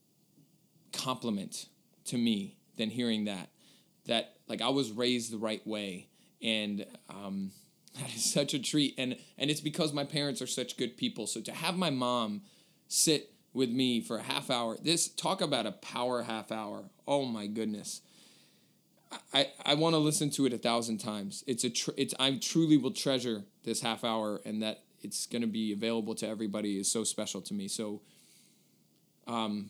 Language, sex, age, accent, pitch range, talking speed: English, male, 20-39, American, 110-140 Hz, 180 wpm